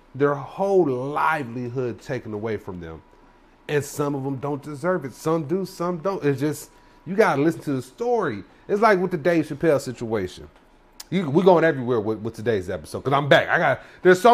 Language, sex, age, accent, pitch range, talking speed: English, male, 30-49, American, 125-170 Hz, 205 wpm